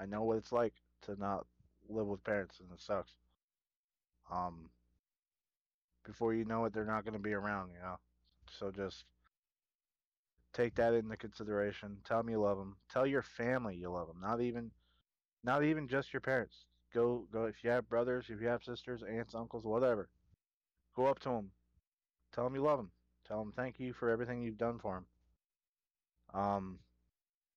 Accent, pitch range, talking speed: American, 90-120 Hz, 180 wpm